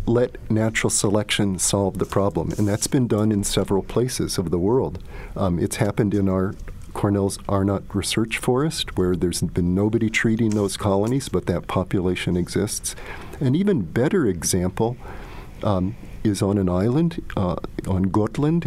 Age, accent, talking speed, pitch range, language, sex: 50-69, American, 155 wpm, 95-115 Hz, English, male